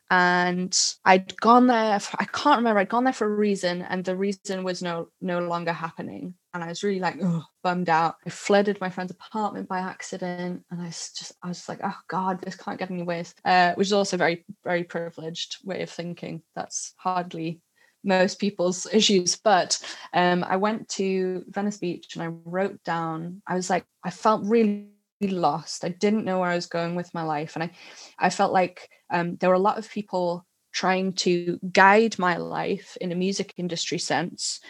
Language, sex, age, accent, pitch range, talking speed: English, female, 10-29, British, 175-200 Hz, 200 wpm